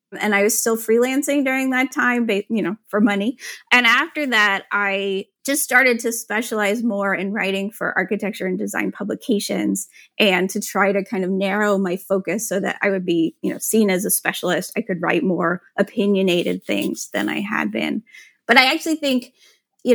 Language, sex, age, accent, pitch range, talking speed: English, female, 30-49, American, 195-240 Hz, 190 wpm